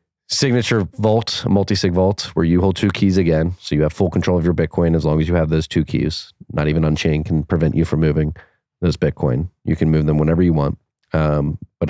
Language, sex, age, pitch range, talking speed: English, male, 30-49, 80-95 Hz, 225 wpm